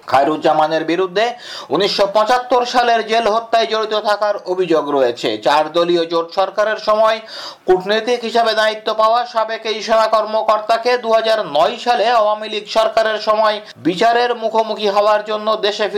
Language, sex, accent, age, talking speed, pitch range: Bengali, male, native, 50-69, 40 wpm, 205-235 Hz